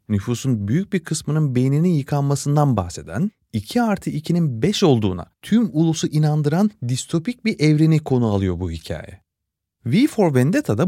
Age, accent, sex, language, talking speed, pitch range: 30-49, native, male, Turkish, 140 wpm, 110-180 Hz